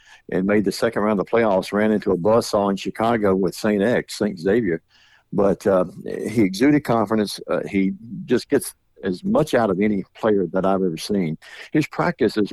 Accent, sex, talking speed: American, male, 190 wpm